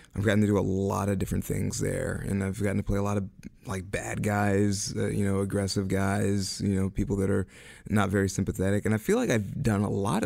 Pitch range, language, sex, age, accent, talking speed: 95-105 Hz, English, male, 30-49, American, 245 wpm